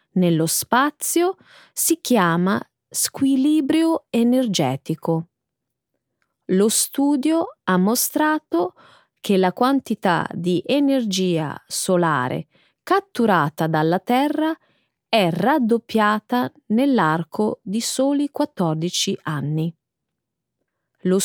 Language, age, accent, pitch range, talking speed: Italian, 20-39, native, 175-270 Hz, 75 wpm